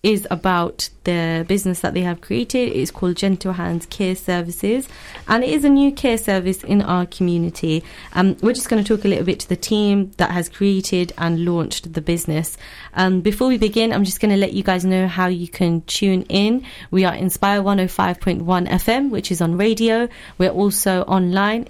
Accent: British